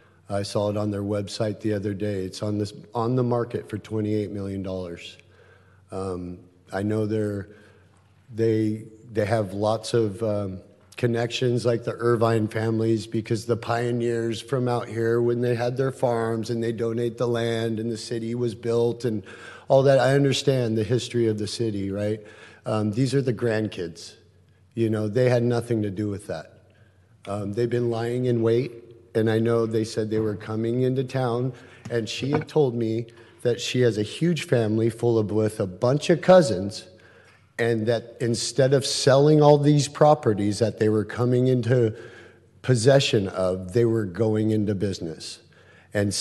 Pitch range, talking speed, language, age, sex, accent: 105-120 Hz, 175 wpm, English, 50-69, male, American